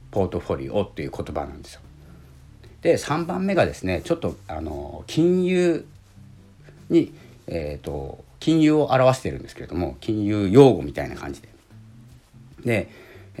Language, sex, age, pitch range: Japanese, male, 50-69, 85-135 Hz